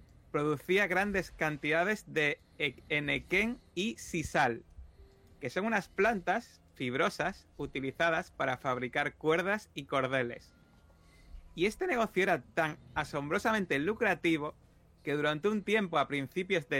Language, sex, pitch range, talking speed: Spanish, male, 125-170 Hz, 115 wpm